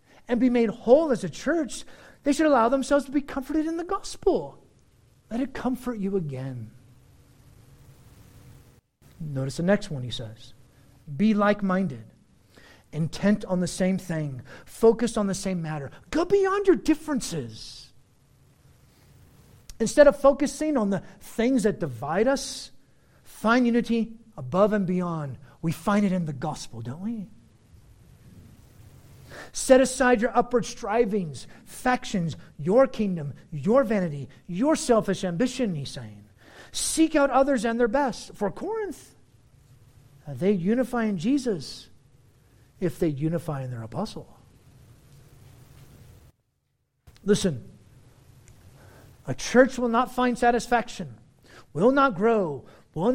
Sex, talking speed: male, 125 wpm